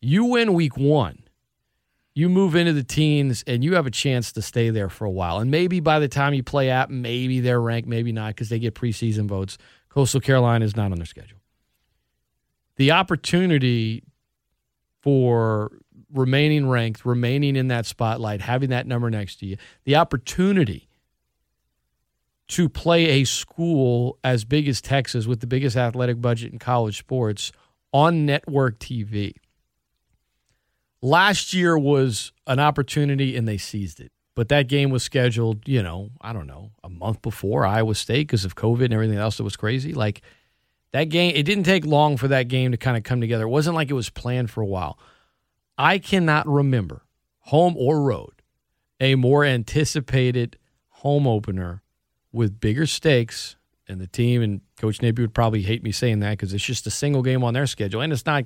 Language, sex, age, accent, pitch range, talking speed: English, male, 40-59, American, 110-140 Hz, 180 wpm